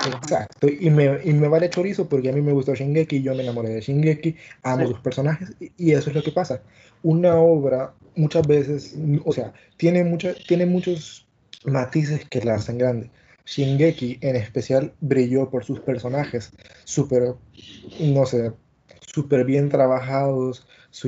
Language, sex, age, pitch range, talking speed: Spanish, male, 20-39, 125-150 Hz, 165 wpm